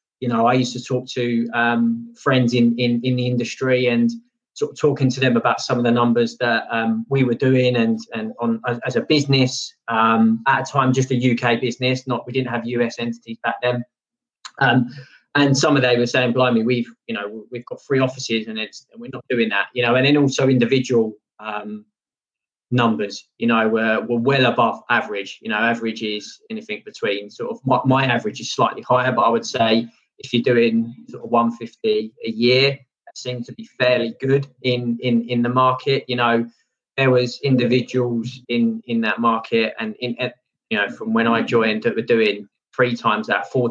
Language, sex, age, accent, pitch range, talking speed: English, male, 20-39, British, 115-130 Hz, 205 wpm